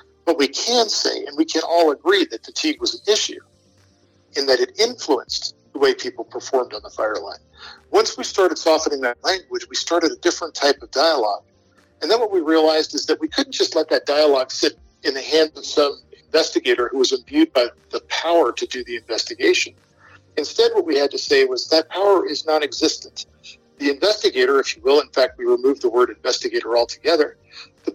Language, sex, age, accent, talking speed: English, male, 50-69, American, 200 wpm